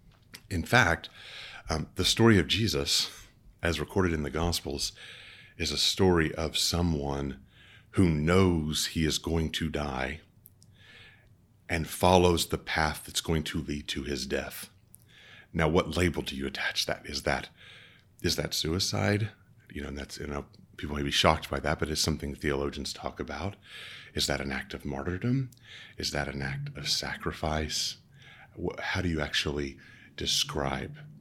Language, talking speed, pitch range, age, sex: English, 160 wpm, 75-100 Hz, 30-49, male